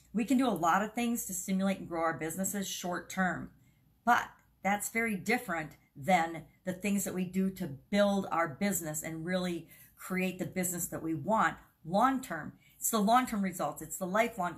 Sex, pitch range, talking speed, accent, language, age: female, 165-205 Hz, 190 wpm, American, English, 50-69